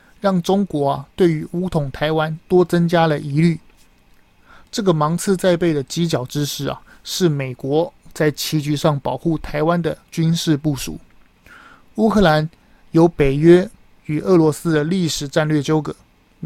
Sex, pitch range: male, 145-175 Hz